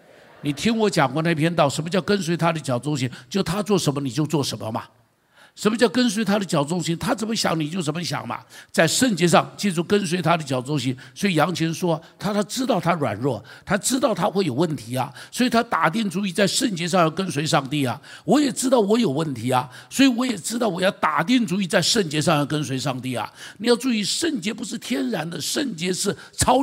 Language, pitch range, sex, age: Chinese, 150-230 Hz, male, 60-79